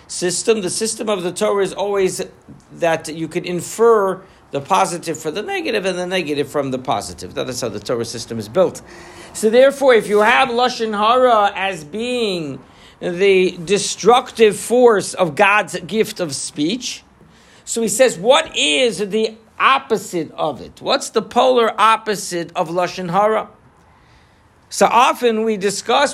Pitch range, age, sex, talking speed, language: 180-230 Hz, 60-79, male, 155 wpm, English